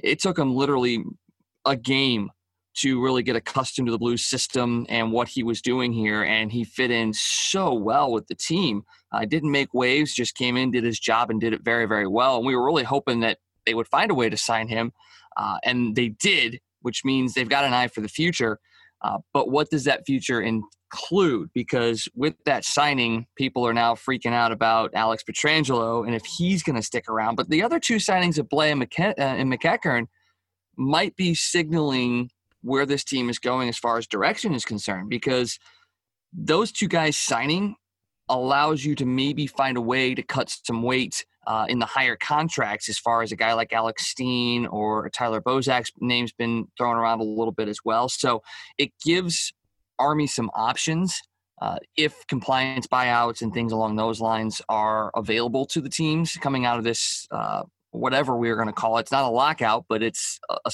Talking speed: 200 wpm